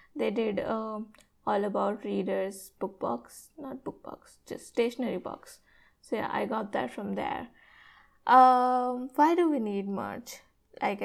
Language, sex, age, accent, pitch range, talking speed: English, female, 20-39, Indian, 210-265 Hz, 150 wpm